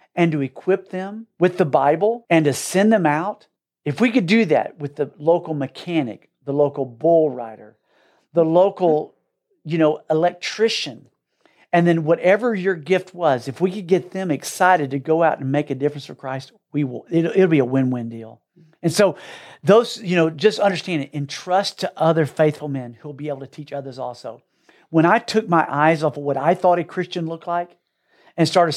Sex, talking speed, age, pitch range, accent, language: male, 200 wpm, 50-69, 140-185 Hz, American, English